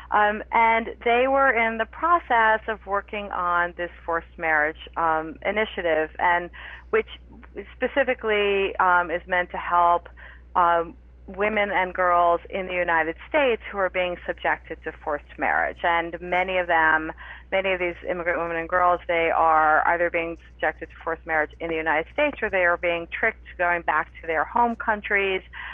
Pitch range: 165-200 Hz